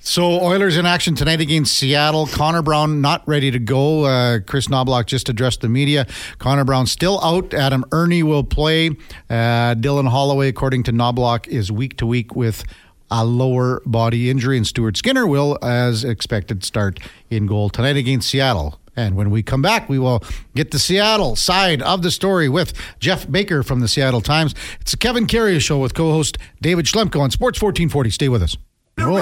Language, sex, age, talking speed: English, male, 50-69, 185 wpm